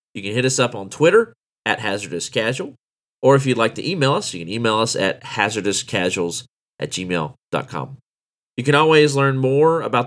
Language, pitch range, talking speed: English, 100-145 Hz, 185 wpm